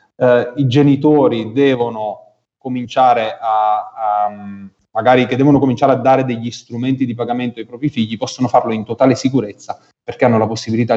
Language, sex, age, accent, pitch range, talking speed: Italian, male, 30-49, native, 105-125 Hz, 160 wpm